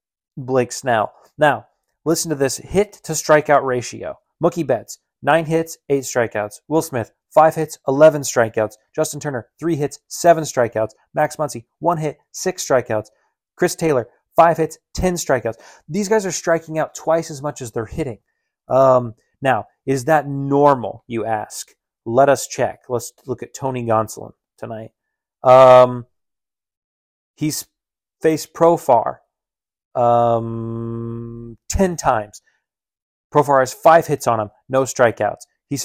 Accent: American